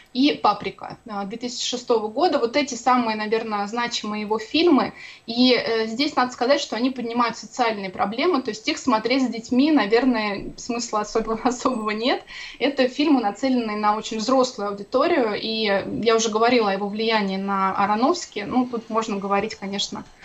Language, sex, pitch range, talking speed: Russian, female, 210-255 Hz, 155 wpm